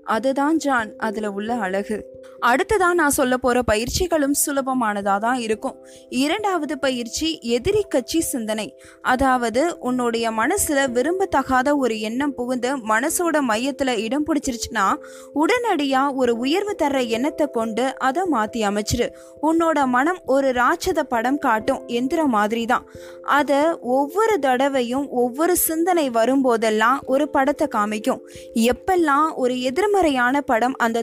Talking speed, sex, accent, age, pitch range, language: 115 wpm, female, native, 20-39, 235-305 Hz, Tamil